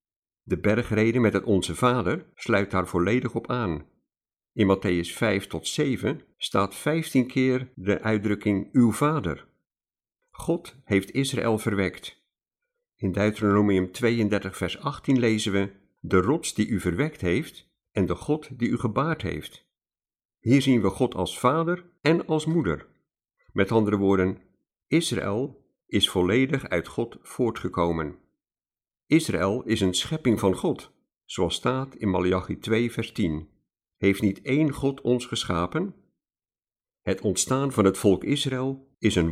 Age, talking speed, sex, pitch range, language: 50-69, 140 wpm, male, 95-125 Hz, Dutch